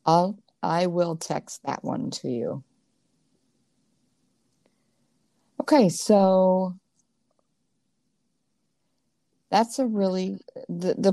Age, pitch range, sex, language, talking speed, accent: 50-69, 145-200 Hz, female, English, 80 wpm, American